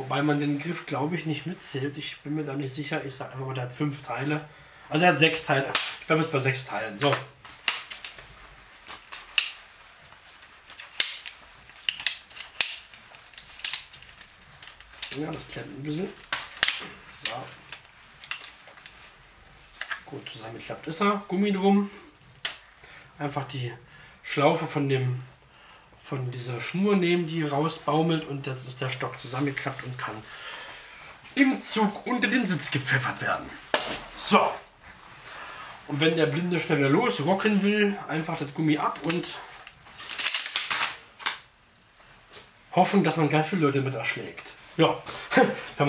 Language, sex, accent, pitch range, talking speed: German, male, German, 140-175 Hz, 125 wpm